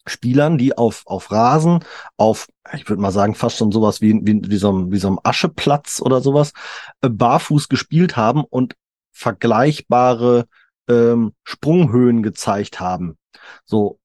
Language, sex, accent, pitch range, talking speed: German, male, German, 110-145 Hz, 140 wpm